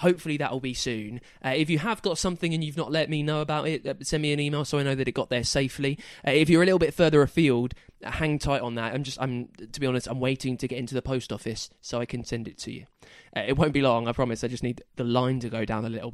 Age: 20-39